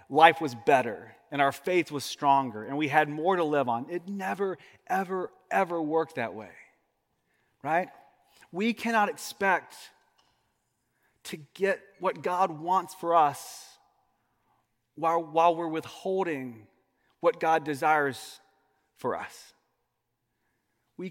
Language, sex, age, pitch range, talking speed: English, male, 30-49, 145-185 Hz, 120 wpm